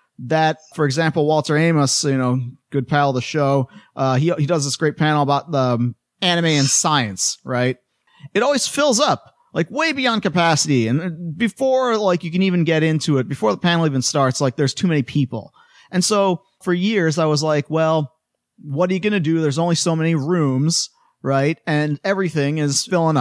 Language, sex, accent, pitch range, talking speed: English, male, American, 140-190 Hz, 200 wpm